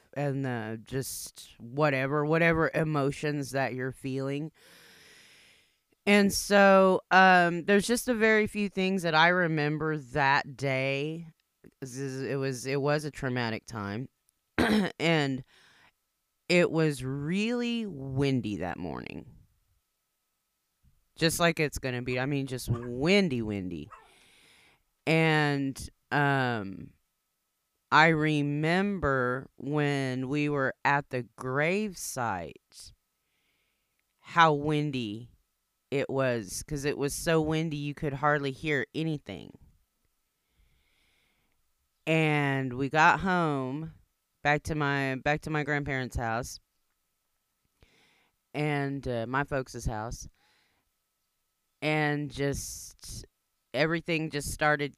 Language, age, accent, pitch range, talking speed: English, 30-49, American, 130-160 Hz, 105 wpm